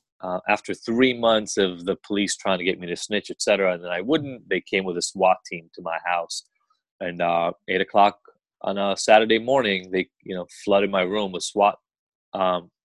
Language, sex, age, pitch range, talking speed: English, male, 20-39, 95-125 Hz, 210 wpm